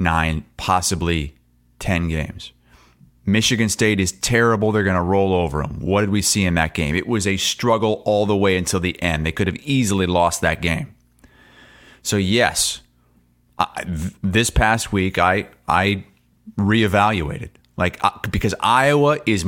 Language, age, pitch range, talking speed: English, 30-49, 85-115 Hz, 155 wpm